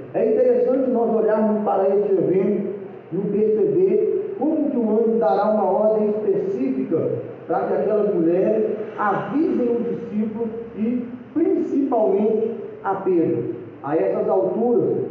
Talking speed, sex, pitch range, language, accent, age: 125 wpm, male, 200-240 Hz, Portuguese, Brazilian, 40-59